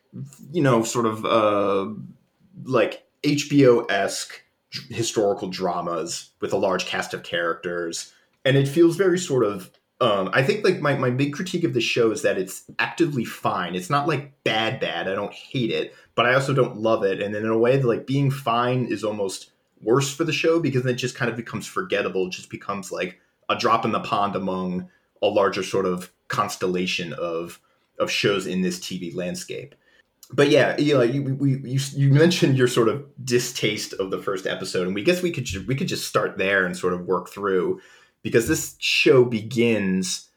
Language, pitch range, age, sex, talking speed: English, 95-140 Hz, 30-49, male, 195 wpm